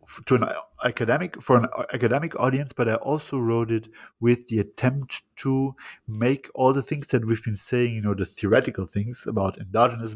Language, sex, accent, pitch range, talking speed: English, male, German, 110-130 Hz, 185 wpm